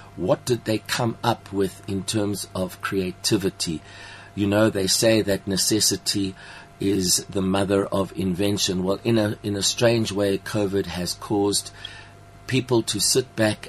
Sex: male